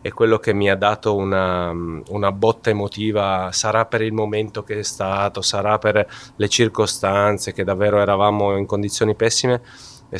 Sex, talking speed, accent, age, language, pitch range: male, 165 wpm, native, 30-49, Italian, 95-115 Hz